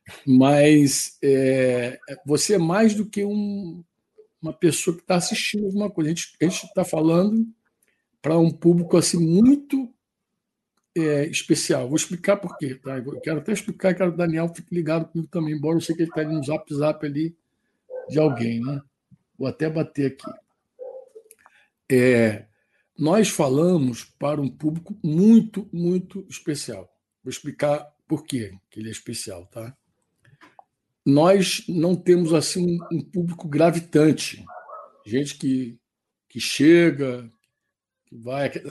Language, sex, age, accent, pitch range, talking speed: Portuguese, male, 60-79, Brazilian, 145-195 Hz, 145 wpm